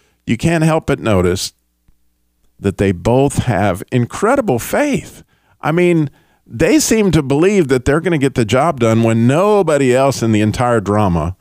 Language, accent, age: English, American, 50-69